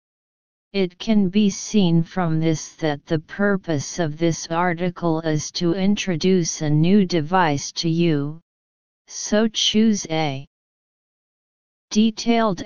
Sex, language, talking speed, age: female, English, 115 wpm, 40-59